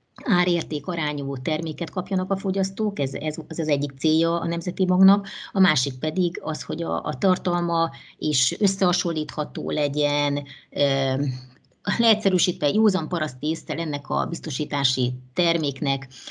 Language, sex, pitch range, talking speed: Hungarian, female, 145-180 Hz, 125 wpm